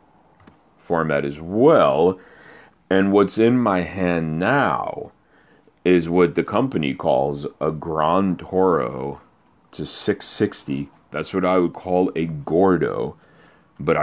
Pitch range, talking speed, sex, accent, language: 75-90 Hz, 115 wpm, male, American, English